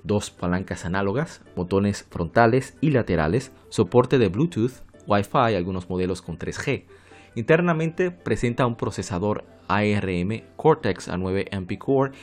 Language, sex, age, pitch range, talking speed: Spanish, male, 30-49, 95-120 Hz, 120 wpm